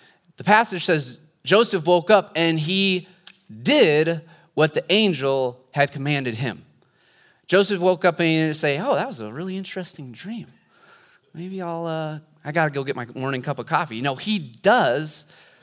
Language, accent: English, American